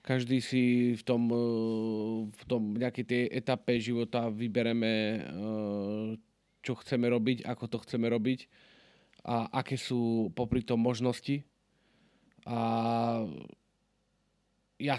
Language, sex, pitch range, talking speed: Slovak, male, 110-125 Hz, 105 wpm